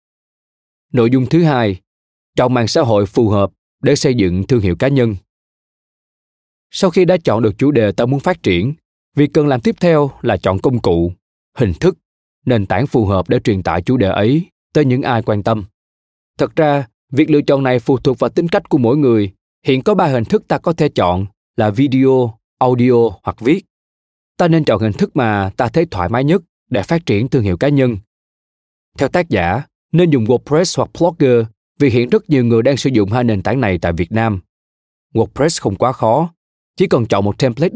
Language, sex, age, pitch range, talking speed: Vietnamese, male, 20-39, 100-150 Hz, 210 wpm